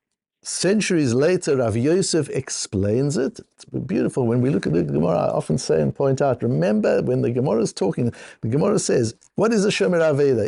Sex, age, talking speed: male, 60-79, 195 wpm